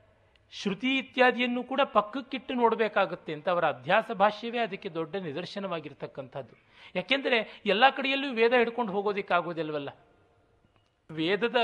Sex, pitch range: male, 155-225 Hz